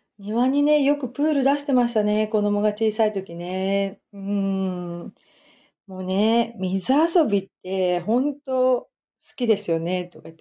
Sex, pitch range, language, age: female, 200-275 Hz, Japanese, 40-59